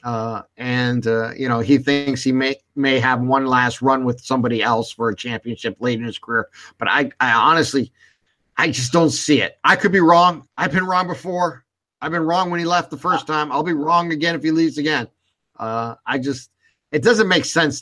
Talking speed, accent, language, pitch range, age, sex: 220 wpm, American, English, 130-165 Hz, 50-69, male